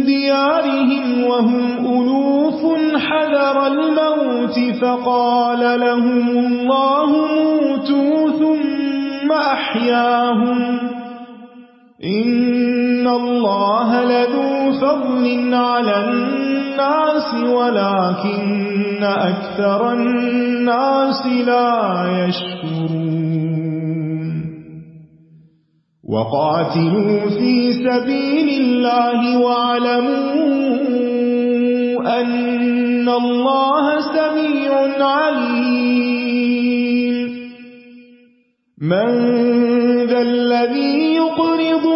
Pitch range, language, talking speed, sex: 240-275 Hz, Urdu, 50 wpm, male